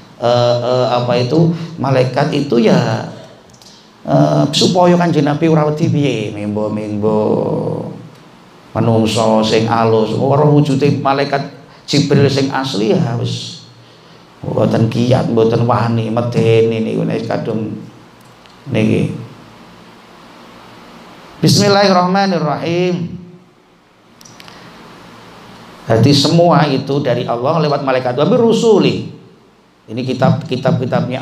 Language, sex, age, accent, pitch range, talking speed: Indonesian, male, 40-59, native, 115-145 Hz, 90 wpm